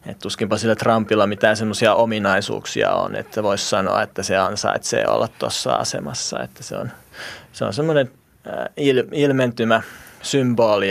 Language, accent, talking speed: Finnish, native, 125 wpm